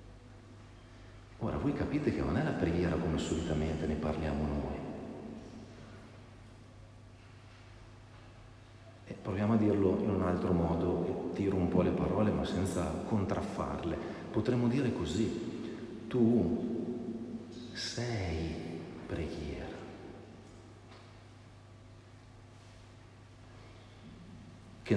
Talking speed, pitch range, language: 85 wpm, 95-120 Hz, Italian